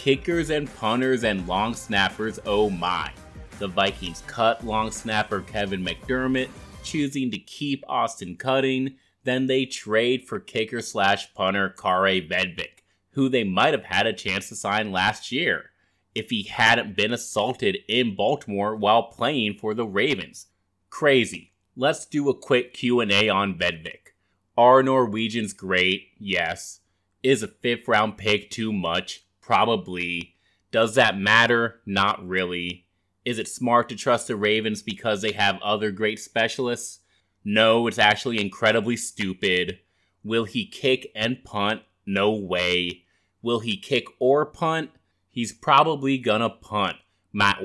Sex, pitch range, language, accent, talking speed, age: male, 95-120 Hz, English, American, 140 wpm, 20-39